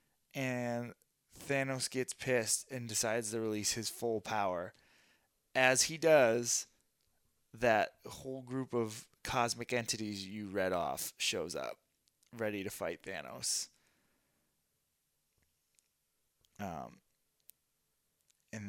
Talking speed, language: 100 wpm, English